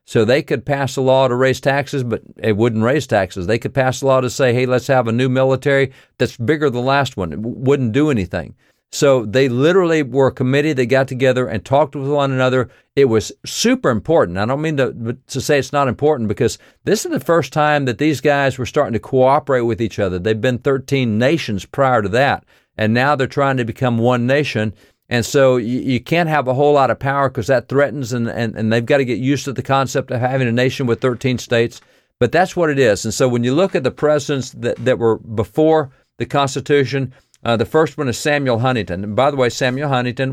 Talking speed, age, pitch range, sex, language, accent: 235 wpm, 50-69, 120-140 Hz, male, English, American